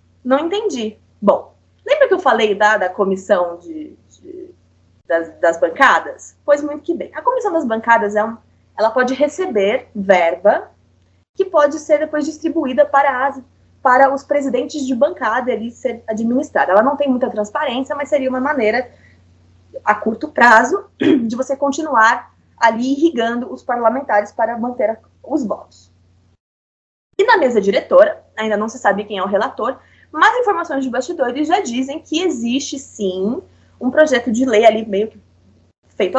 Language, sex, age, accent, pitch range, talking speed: Portuguese, female, 20-39, Brazilian, 215-300 Hz, 150 wpm